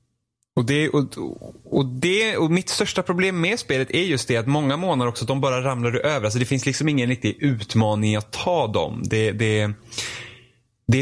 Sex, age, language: male, 10-29, Swedish